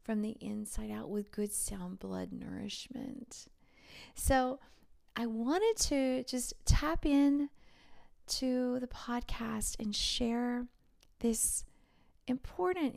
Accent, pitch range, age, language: American, 210-255 Hz, 30-49, English